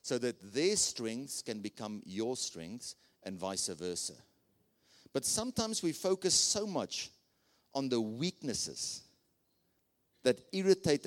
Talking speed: 120 wpm